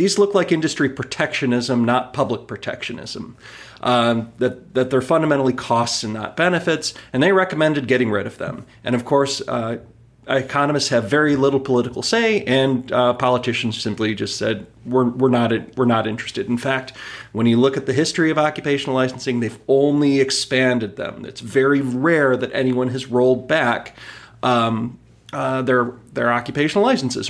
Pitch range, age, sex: 120-140 Hz, 30-49, male